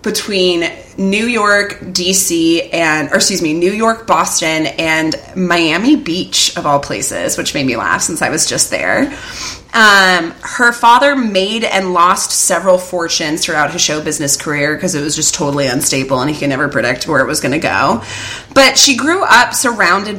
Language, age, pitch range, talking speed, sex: English, 20-39, 170-225 Hz, 180 wpm, female